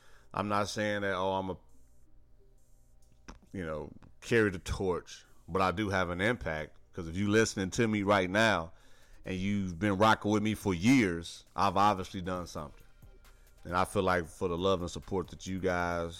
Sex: male